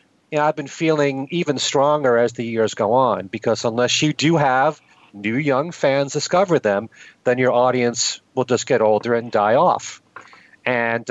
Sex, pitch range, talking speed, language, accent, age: male, 120-150 Hz, 165 wpm, English, American, 40-59